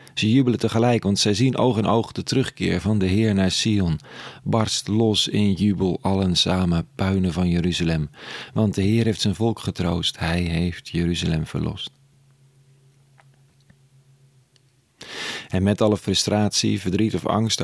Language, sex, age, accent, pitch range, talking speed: Dutch, male, 40-59, Dutch, 85-110 Hz, 145 wpm